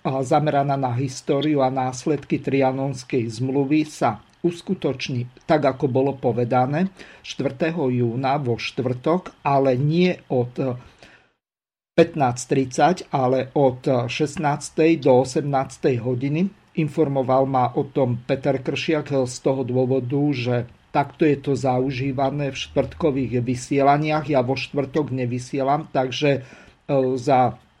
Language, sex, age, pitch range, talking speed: Slovak, male, 50-69, 135-165 Hz, 110 wpm